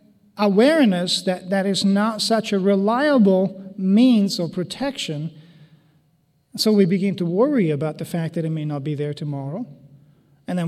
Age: 40-59